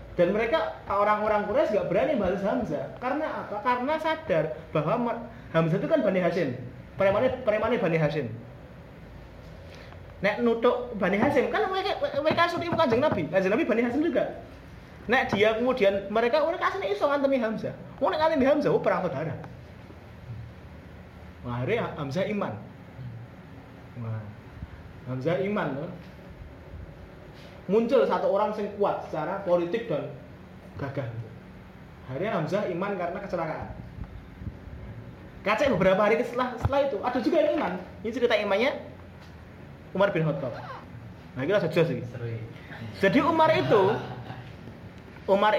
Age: 30-49